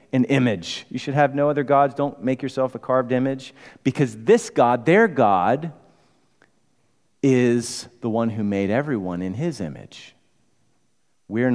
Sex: male